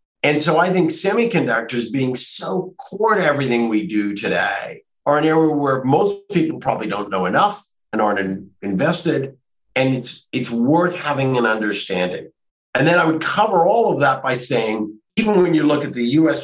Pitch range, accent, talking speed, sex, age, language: 105-145 Hz, American, 185 wpm, male, 50-69, English